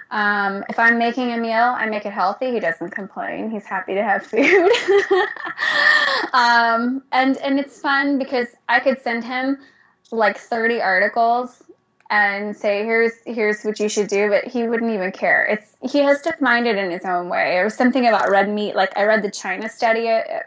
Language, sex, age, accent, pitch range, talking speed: English, female, 10-29, American, 205-250 Hz, 195 wpm